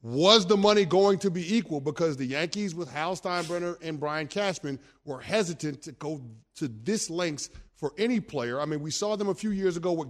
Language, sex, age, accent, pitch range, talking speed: English, male, 30-49, American, 140-185 Hz, 215 wpm